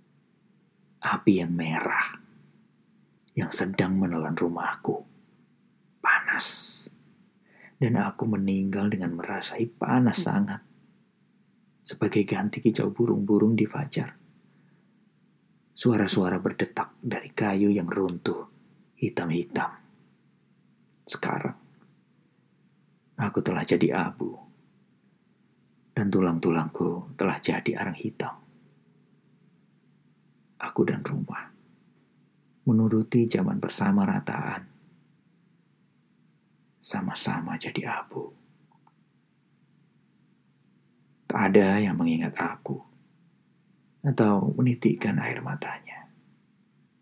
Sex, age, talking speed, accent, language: male, 40-59, 75 wpm, native, Indonesian